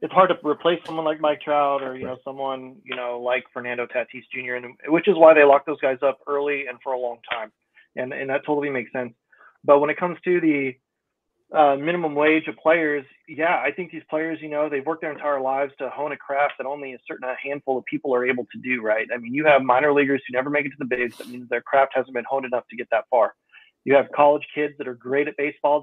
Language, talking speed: English, 260 wpm